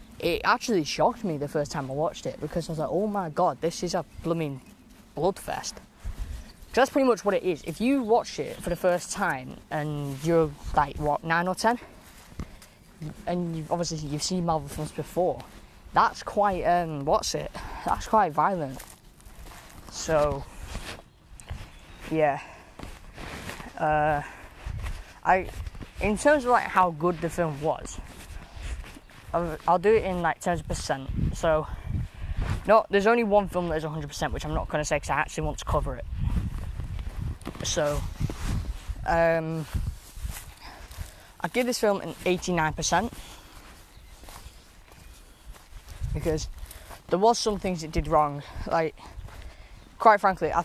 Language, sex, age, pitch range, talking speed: English, female, 10-29, 120-180 Hz, 145 wpm